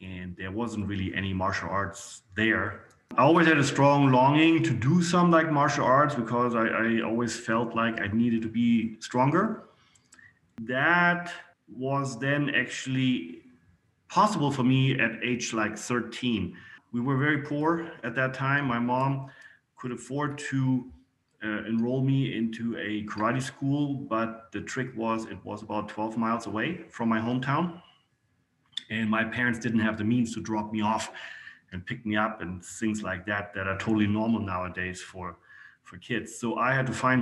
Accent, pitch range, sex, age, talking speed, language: German, 105-130 Hz, male, 30-49, 170 wpm, English